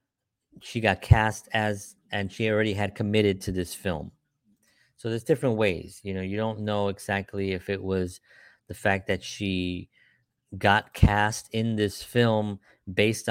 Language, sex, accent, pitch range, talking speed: English, male, American, 100-120 Hz, 160 wpm